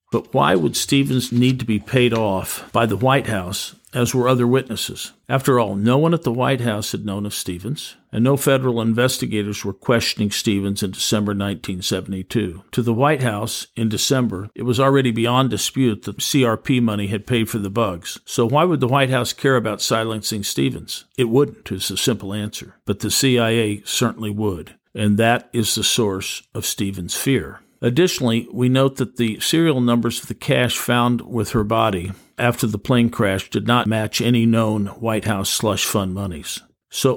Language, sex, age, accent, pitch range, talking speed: English, male, 50-69, American, 105-125 Hz, 185 wpm